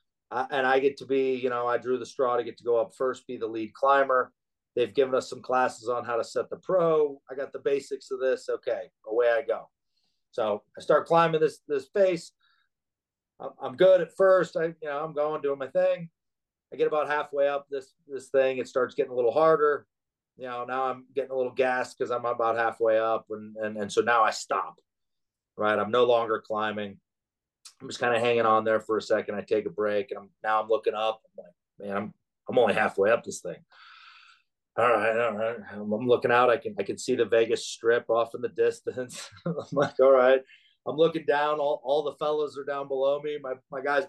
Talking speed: 230 wpm